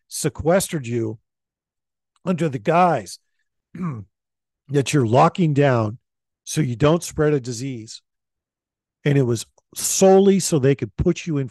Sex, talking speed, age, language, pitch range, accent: male, 130 wpm, 50-69, English, 105-140 Hz, American